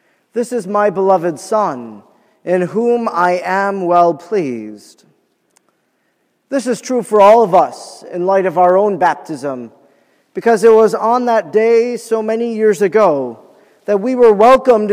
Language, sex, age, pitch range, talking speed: English, male, 40-59, 175-225 Hz, 155 wpm